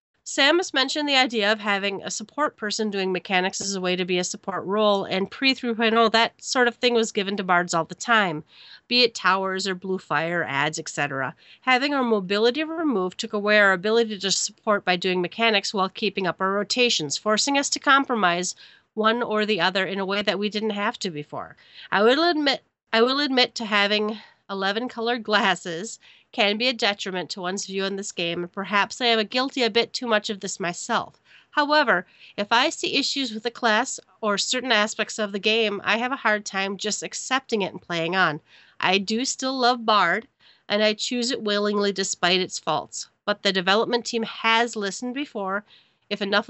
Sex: female